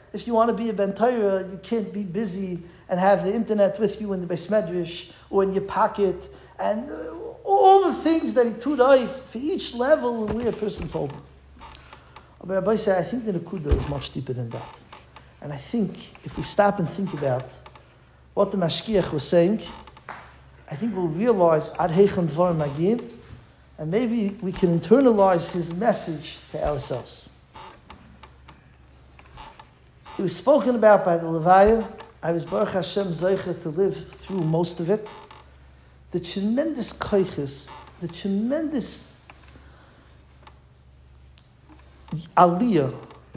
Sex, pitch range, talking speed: male, 150-215 Hz, 145 wpm